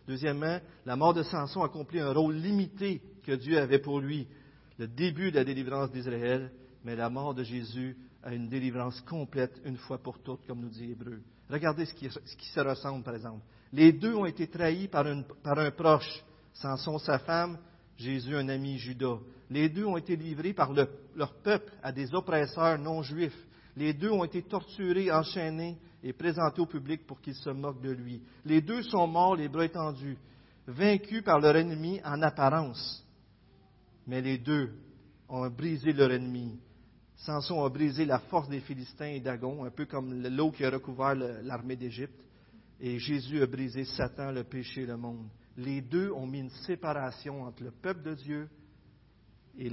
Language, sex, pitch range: French, male, 125-155 Hz